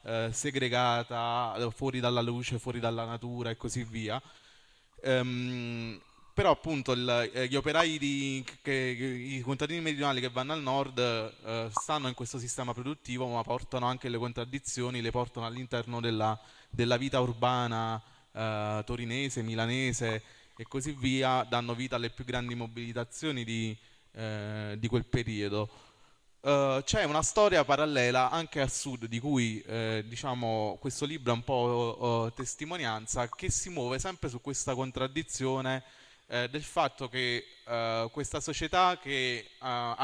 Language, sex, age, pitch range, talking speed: Italian, male, 20-39, 115-135 Hz, 130 wpm